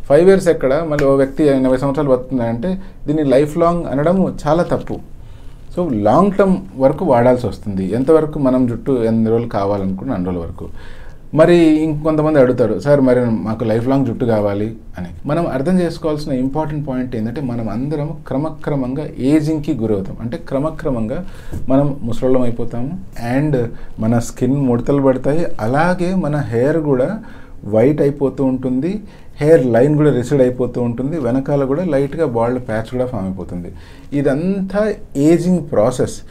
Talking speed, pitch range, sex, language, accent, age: 85 wpm, 120-150 Hz, male, English, Indian, 40-59